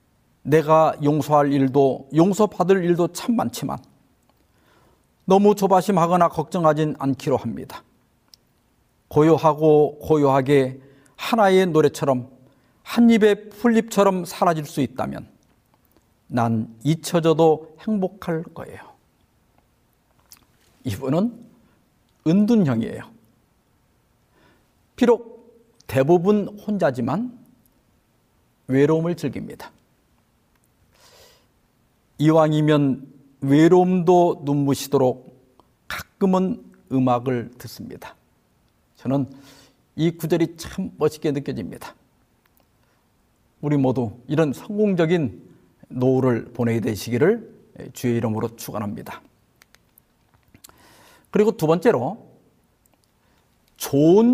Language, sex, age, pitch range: Korean, male, 50-69, 135-195 Hz